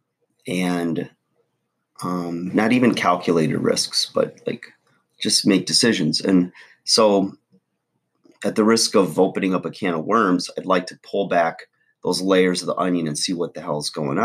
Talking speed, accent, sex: 165 wpm, American, male